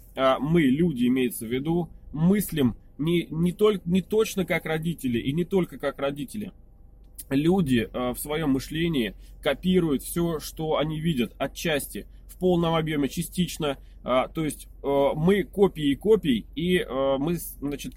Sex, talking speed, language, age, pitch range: male, 150 wpm, Russian, 20-39, 130-170 Hz